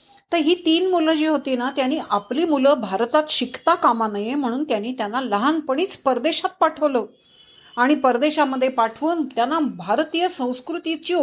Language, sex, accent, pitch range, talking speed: Marathi, female, native, 225-305 Hz, 140 wpm